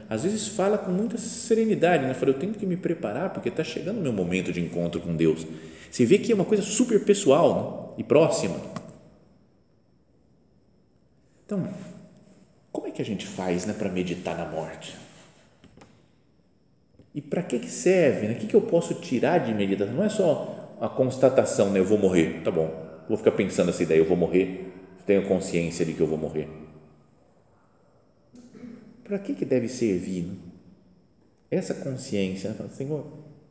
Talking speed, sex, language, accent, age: 170 wpm, male, Portuguese, Brazilian, 40-59